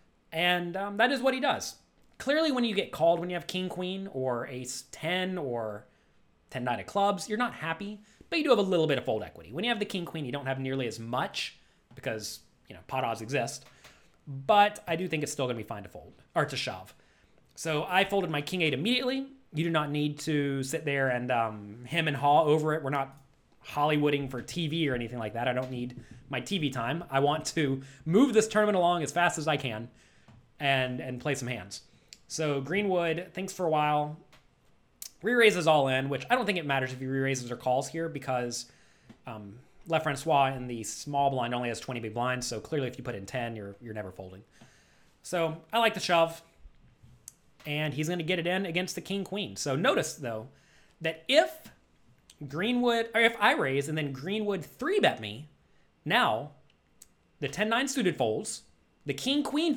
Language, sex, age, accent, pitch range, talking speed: English, male, 30-49, American, 130-185 Hz, 200 wpm